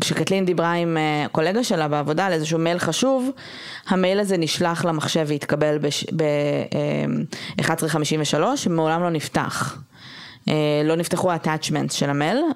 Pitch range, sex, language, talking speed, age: 150-180 Hz, female, Hebrew, 120 wpm, 20-39